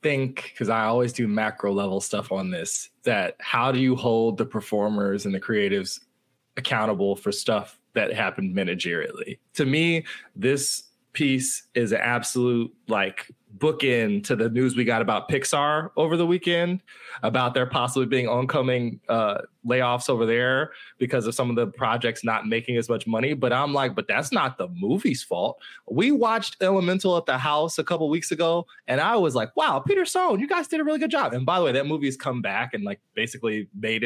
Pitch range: 120-185 Hz